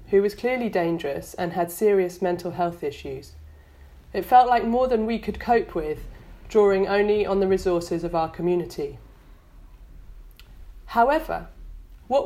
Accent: British